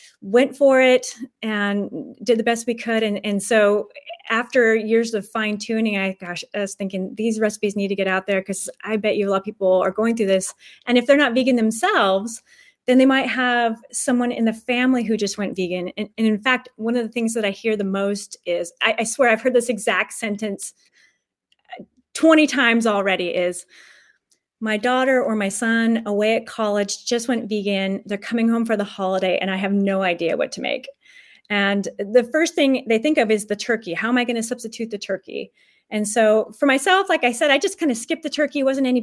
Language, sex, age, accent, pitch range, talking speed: English, female, 30-49, American, 205-250 Hz, 220 wpm